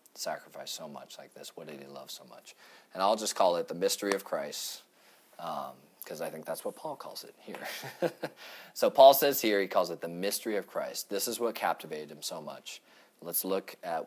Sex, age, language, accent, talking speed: male, 40-59, English, American, 220 wpm